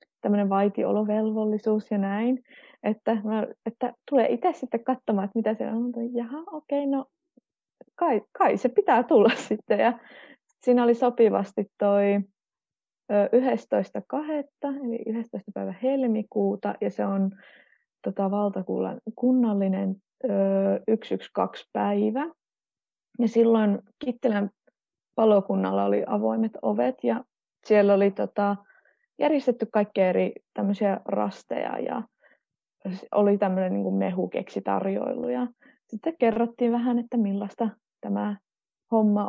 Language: Finnish